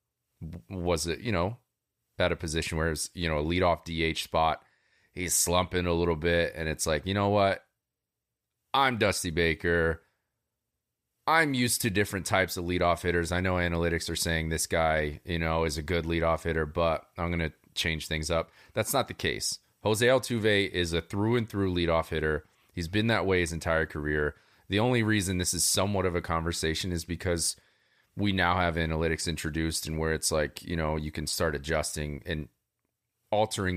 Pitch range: 80-95 Hz